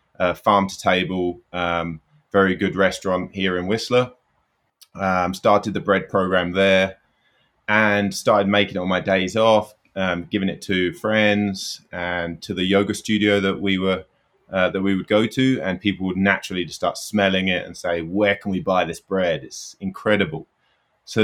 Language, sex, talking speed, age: English, male, 180 wpm, 20-39